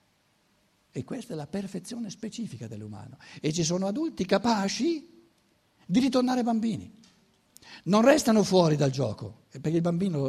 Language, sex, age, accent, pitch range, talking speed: Italian, male, 60-79, native, 135-215 Hz, 135 wpm